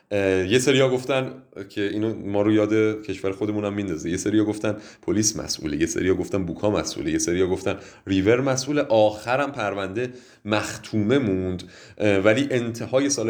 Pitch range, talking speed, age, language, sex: 100-125 Hz, 160 wpm, 30-49, Persian, male